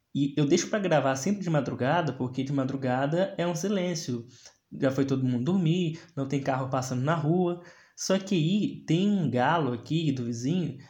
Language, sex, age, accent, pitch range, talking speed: Portuguese, male, 20-39, Brazilian, 140-190 Hz, 185 wpm